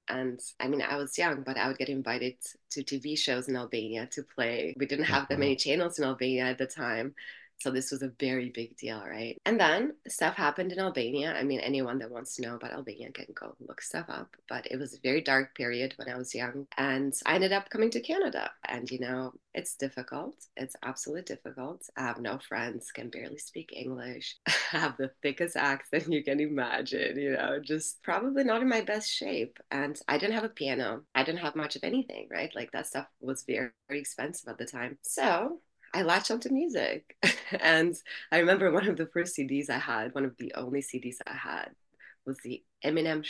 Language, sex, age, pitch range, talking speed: English, female, 20-39, 130-180 Hz, 215 wpm